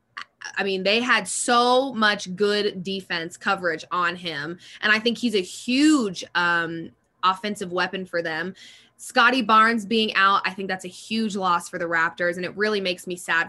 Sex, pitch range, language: female, 180-225 Hz, English